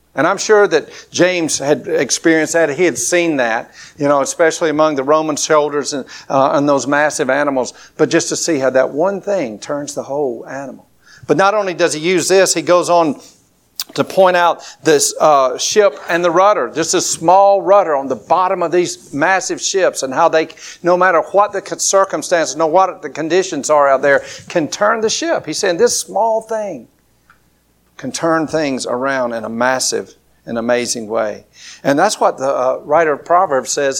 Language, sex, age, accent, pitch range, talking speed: English, male, 60-79, American, 140-190 Hz, 195 wpm